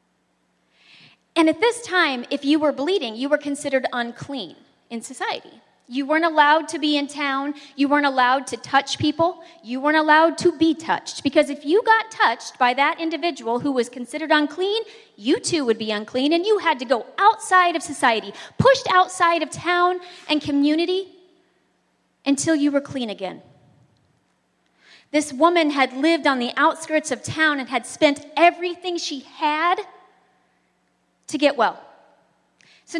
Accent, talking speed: American, 160 wpm